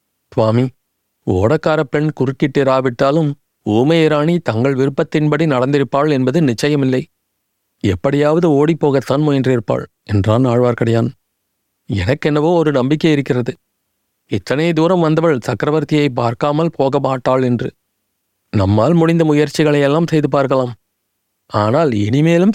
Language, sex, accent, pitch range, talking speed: Tamil, male, native, 115-150 Hz, 90 wpm